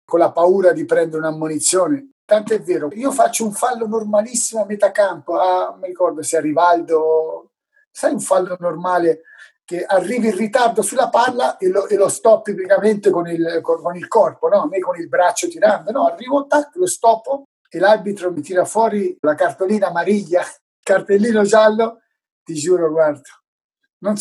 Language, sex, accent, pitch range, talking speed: Italian, male, native, 155-225 Hz, 165 wpm